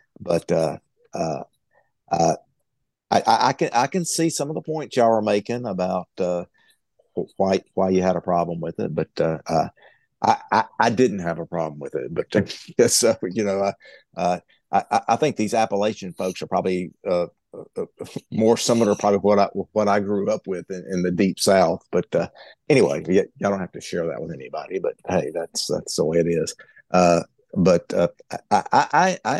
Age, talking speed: 50-69, 200 wpm